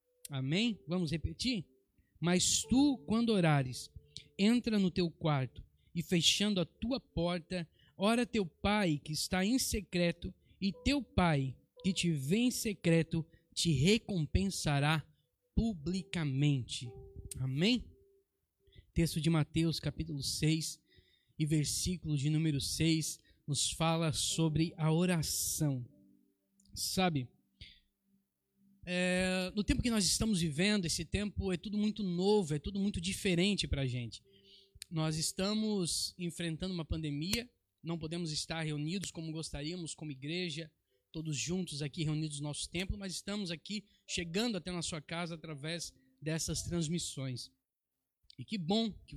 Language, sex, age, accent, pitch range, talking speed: Portuguese, male, 20-39, Brazilian, 145-185 Hz, 130 wpm